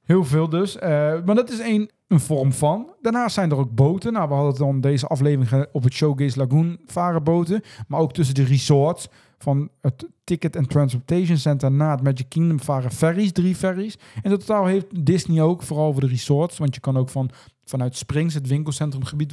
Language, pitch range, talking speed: Dutch, 140-180 Hz, 200 wpm